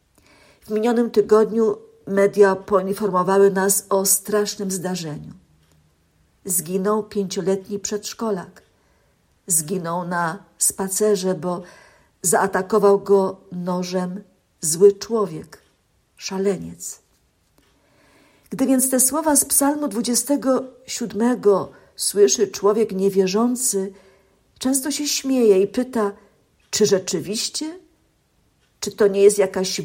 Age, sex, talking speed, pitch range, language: 50-69, female, 90 wpm, 190-230 Hz, Polish